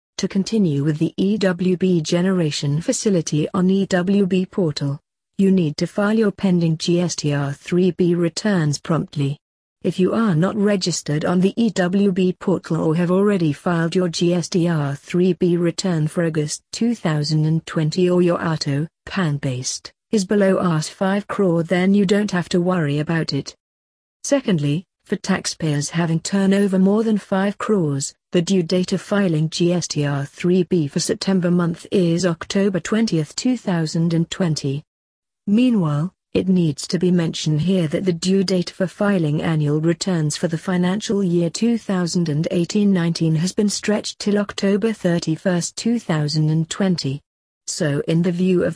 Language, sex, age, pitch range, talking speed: English, female, 50-69, 160-195 Hz, 140 wpm